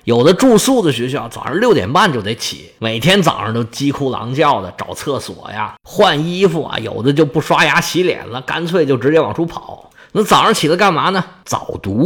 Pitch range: 125-200 Hz